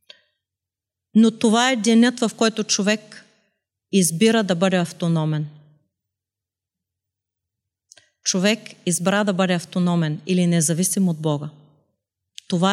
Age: 40-59